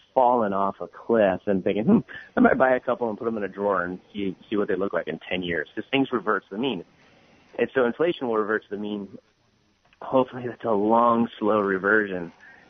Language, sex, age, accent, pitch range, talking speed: English, male, 30-49, American, 95-115 Hz, 225 wpm